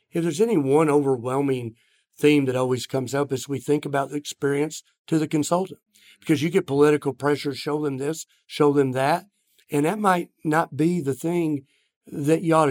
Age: 50-69